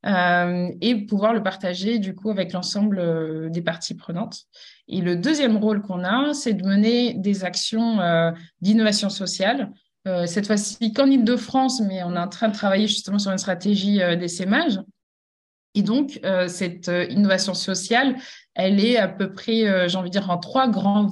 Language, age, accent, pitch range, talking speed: French, 20-39, French, 185-225 Hz, 185 wpm